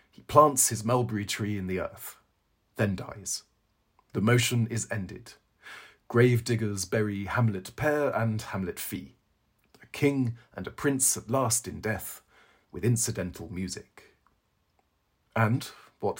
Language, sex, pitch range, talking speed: English, male, 105-125 Hz, 130 wpm